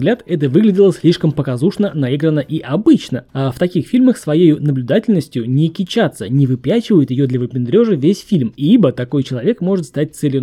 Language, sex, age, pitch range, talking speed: Russian, male, 20-39, 135-195 Hz, 160 wpm